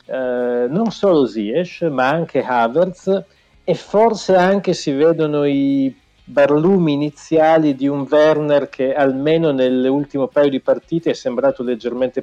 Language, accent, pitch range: Italian, native, 125-160 Hz